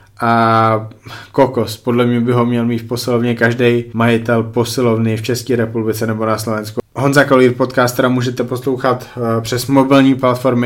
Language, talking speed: Czech, 150 wpm